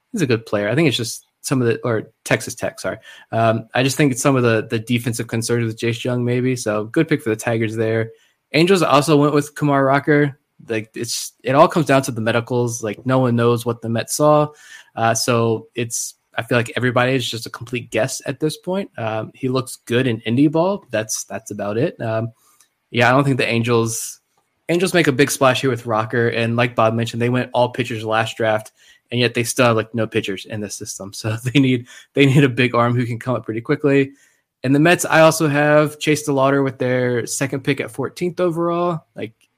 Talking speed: 230 wpm